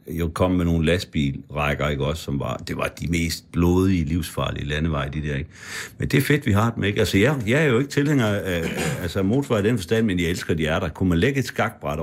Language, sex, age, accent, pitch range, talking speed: Danish, male, 60-79, native, 85-120 Hz, 255 wpm